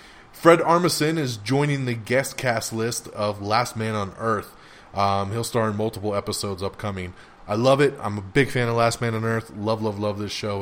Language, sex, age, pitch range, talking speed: English, male, 20-39, 105-130 Hz, 210 wpm